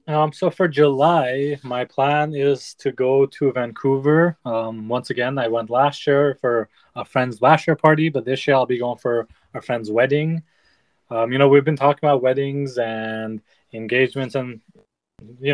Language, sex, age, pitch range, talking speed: English, male, 20-39, 120-140 Hz, 180 wpm